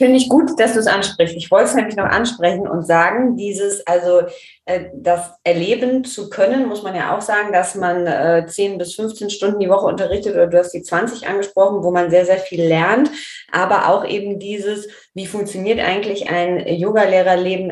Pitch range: 175-215 Hz